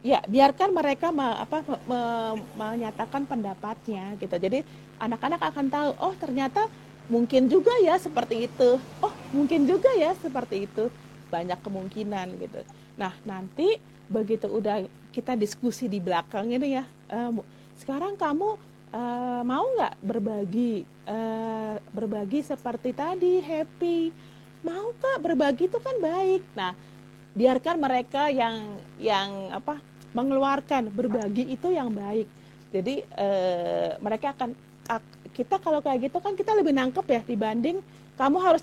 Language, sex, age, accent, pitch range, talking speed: Indonesian, female, 40-59, native, 220-300 Hz, 125 wpm